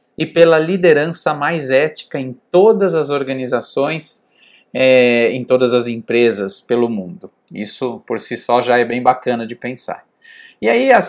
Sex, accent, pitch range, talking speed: male, Brazilian, 130-170 Hz, 150 wpm